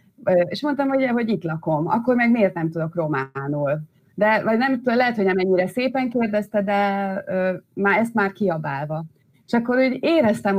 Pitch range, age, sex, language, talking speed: 155-195 Hz, 30-49, female, Hungarian, 160 wpm